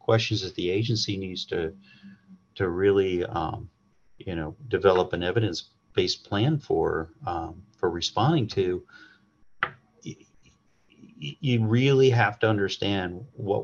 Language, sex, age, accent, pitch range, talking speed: English, male, 40-59, American, 95-120 Hz, 115 wpm